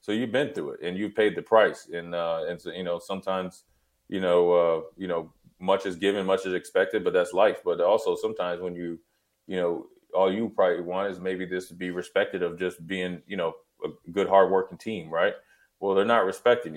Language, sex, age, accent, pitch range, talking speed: English, male, 30-49, American, 90-110 Hz, 220 wpm